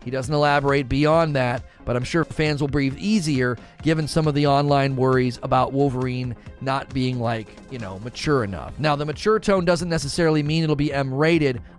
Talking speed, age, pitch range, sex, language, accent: 190 wpm, 30-49, 125-170 Hz, male, English, American